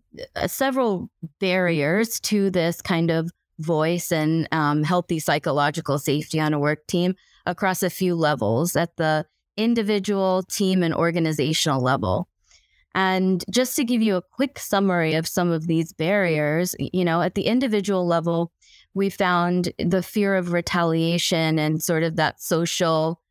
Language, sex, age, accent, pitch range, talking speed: English, female, 20-39, American, 160-185 Hz, 145 wpm